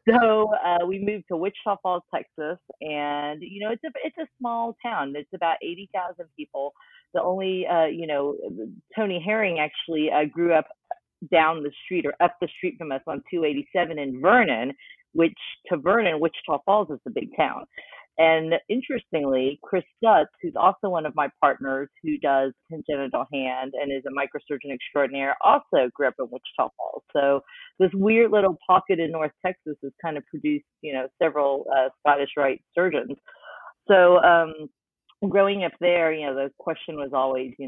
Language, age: English, 40-59